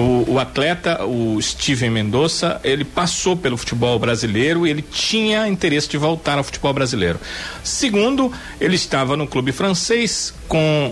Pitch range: 130-180 Hz